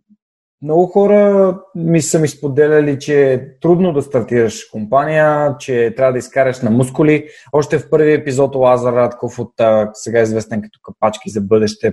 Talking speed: 155 wpm